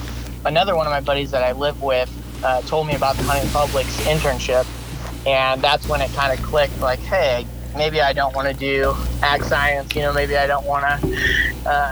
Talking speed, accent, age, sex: 200 wpm, American, 20-39, male